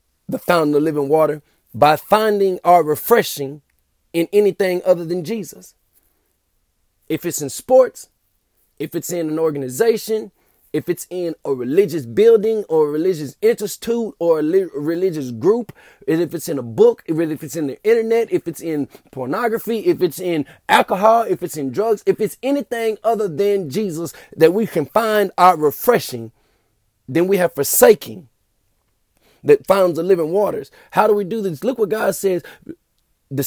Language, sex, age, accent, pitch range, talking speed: English, male, 30-49, American, 160-220 Hz, 165 wpm